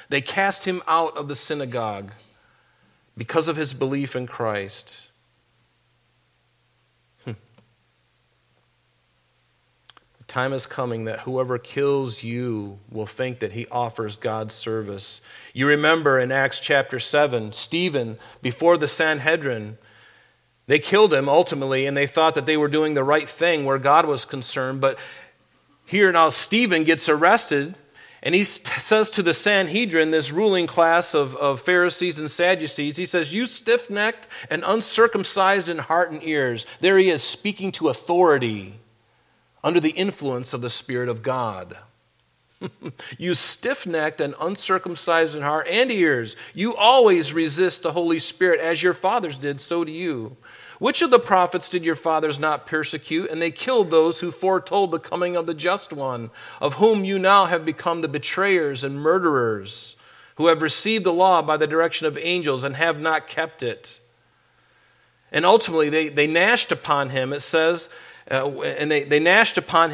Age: 40-59